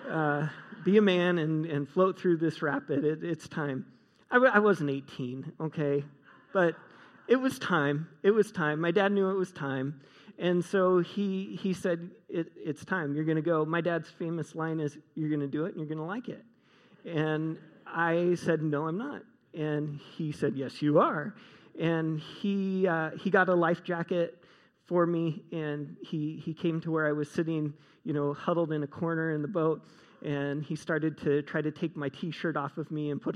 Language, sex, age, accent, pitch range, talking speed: English, male, 40-59, American, 150-180 Hz, 205 wpm